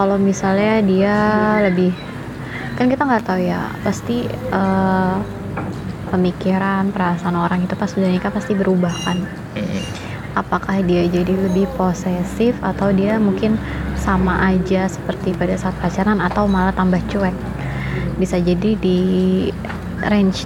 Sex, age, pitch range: female, 20-39, 180-195 Hz